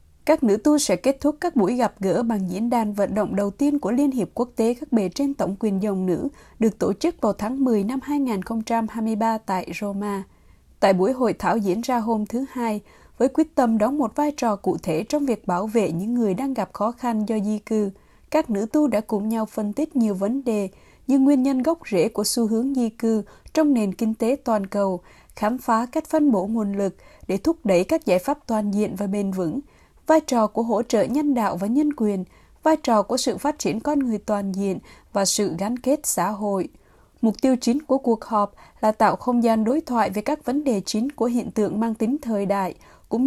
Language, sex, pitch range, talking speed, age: Vietnamese, female, 205-255 Hz, 230 wpm, 20-39